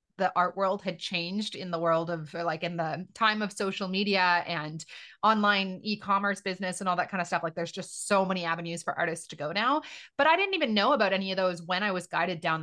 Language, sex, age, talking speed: English, female, 30-49, 240 wpm